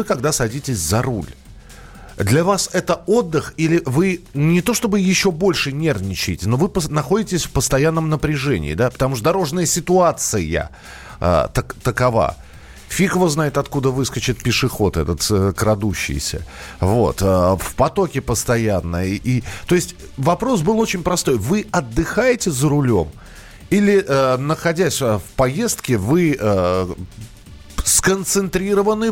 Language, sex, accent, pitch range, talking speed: Russian, male, native, 105-160 Hz, 125 wpm